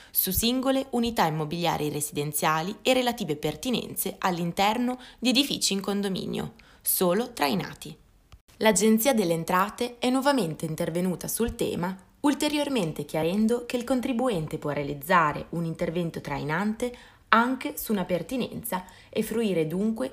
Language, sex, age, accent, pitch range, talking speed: Italian, female, 20-39, native, 160-230 Hz, 120 wpm